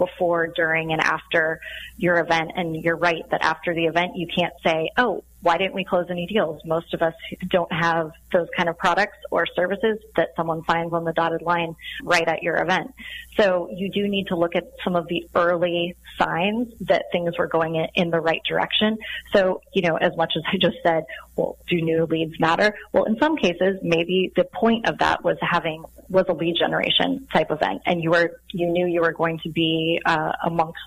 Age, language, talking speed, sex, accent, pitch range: 30-49, English, 210 wpm, female, American, 165-185 Hz